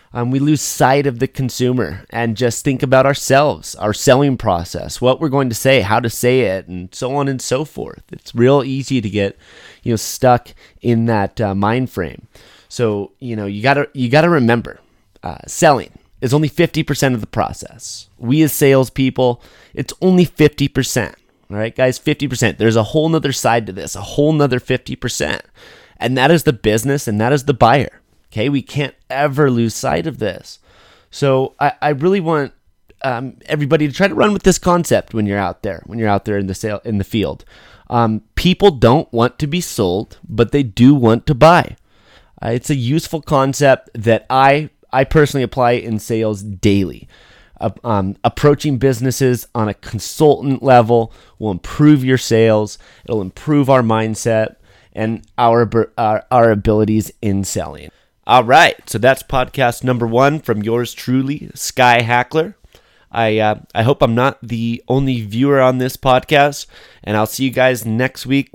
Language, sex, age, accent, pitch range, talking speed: English, male, 30-49, American, 110-140 Hz, 185 wpm